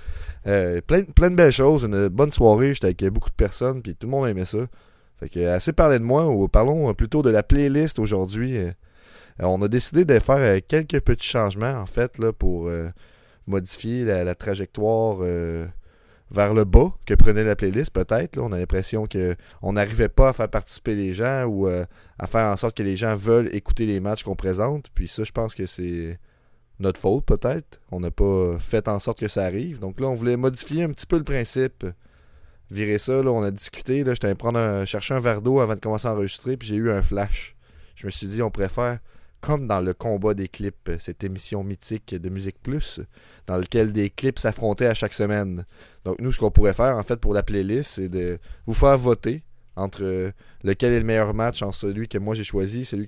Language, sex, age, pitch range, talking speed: French, male, 20-39, 95-120 Hz, 215 wpm